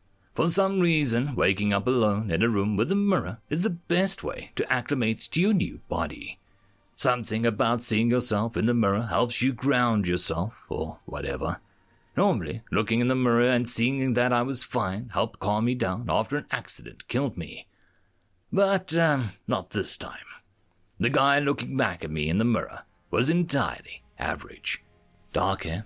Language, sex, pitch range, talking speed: English, male, 100-145 Hz, 170 wpm